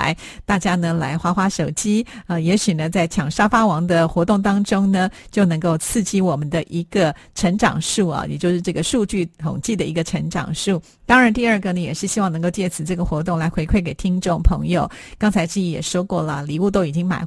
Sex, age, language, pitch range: female, 40-59, Chinese, 165-205 Hz